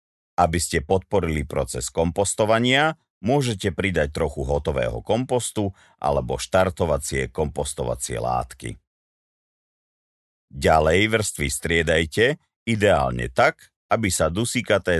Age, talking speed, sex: 50-69, 90 wpm, male